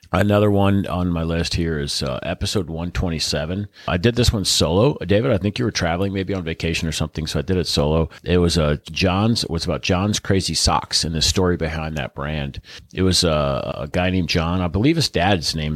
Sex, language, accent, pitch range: male, English, American, 80-105 Hz